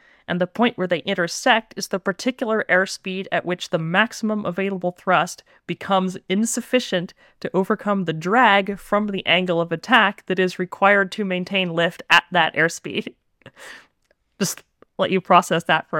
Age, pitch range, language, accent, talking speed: 30-49, 180-205 Hz, English, American, 160 wpm